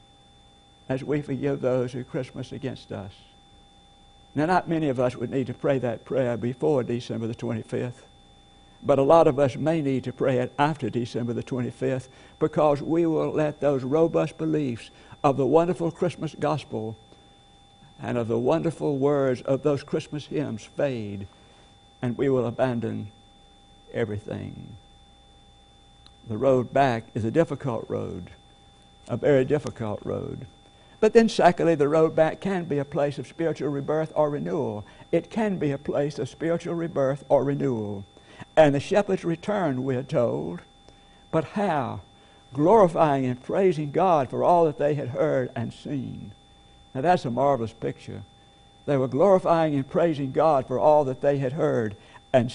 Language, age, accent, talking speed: English, 60-79, American, 160 wpm